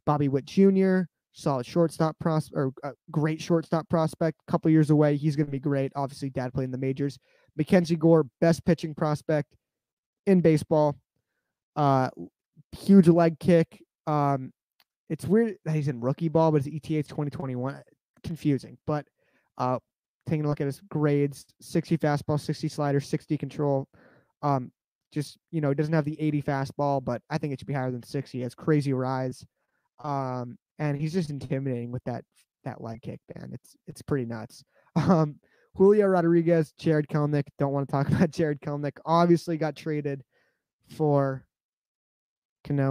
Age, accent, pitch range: 20-39, American, 135-160 Hz